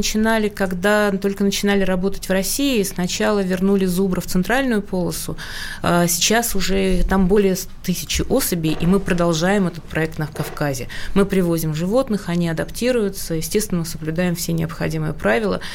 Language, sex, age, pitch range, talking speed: Russian, female, 30-49, 165-200 Hz, 140 wpm